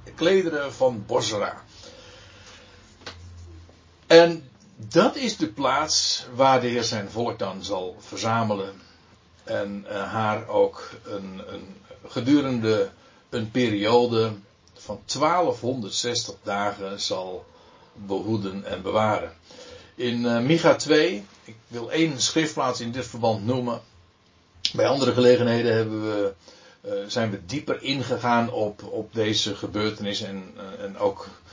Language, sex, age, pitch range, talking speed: Dutch, male, 60-79, 105-130 Hz, 110 wpm